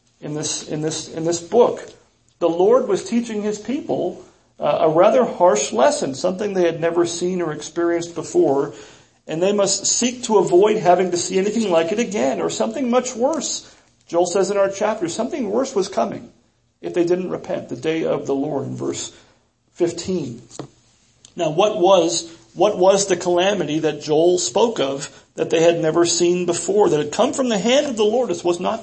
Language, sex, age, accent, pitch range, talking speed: English, male, 40-59, American, 165-215 Hz, 195 wpm